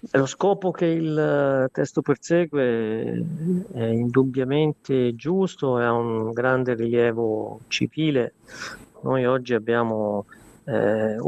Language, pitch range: Italian, 115-140 Hz